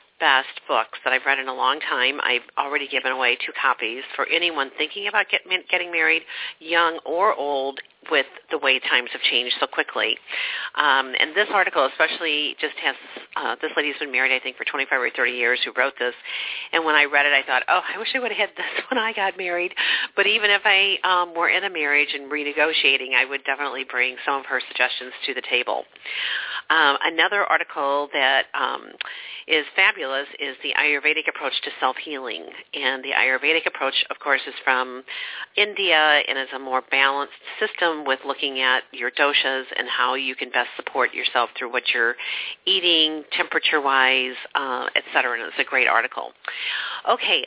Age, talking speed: 50-69, 190 wpm